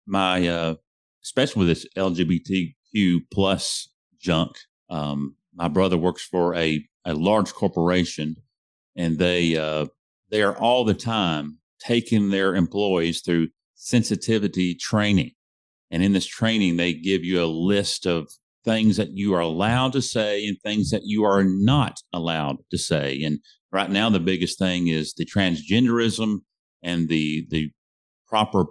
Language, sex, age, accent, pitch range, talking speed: English, male, 40-59, American, 85-105 Hz, 145 wpm